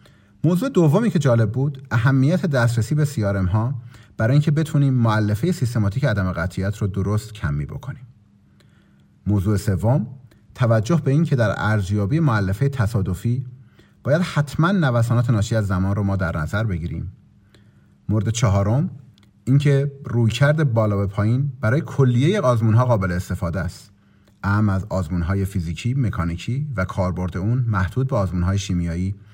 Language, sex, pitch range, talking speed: Persian, male, 100-140 Hz, 145 wpm